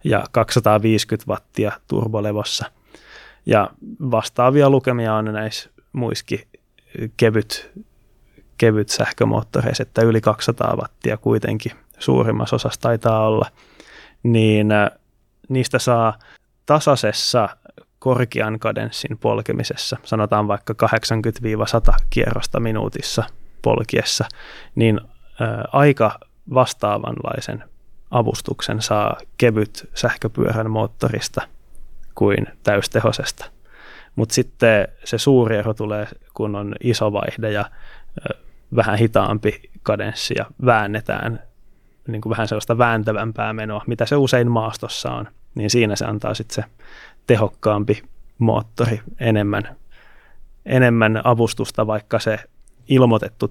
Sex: male